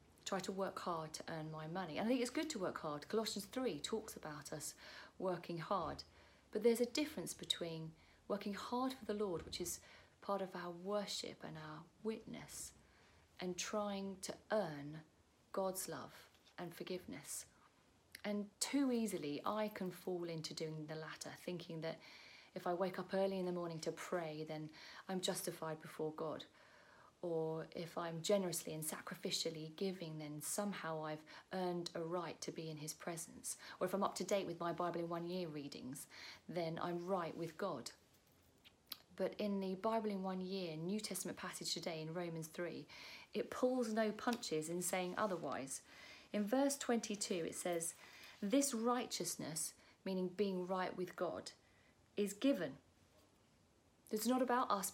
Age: 40-59